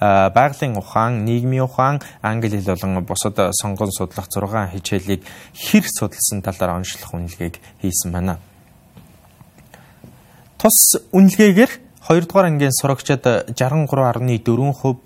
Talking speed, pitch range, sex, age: 110 wpm, 100-145 Hz, male, 20-39